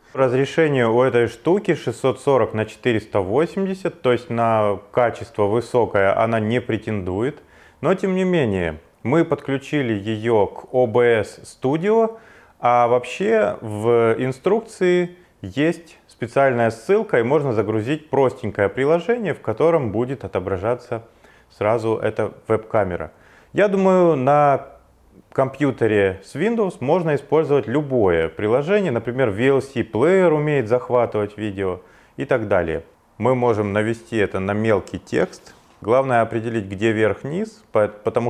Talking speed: 120 wpm